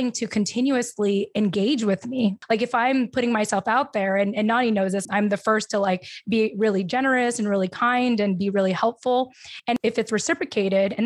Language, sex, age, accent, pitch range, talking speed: English, female, 20-39, American, 200-235 Hz, 200 wpm